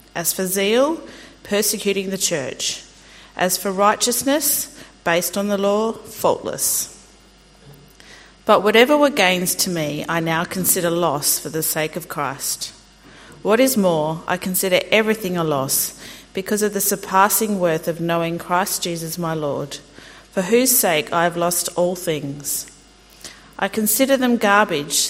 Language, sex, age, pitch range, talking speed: English, female, 40-59, 170-205 Hz, 145 wpm